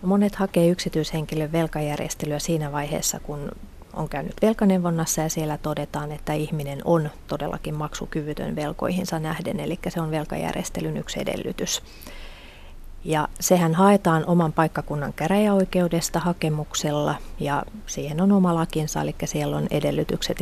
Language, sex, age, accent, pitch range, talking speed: Finnish, female, 30-49, native, 150-190 Hz, 120 wpm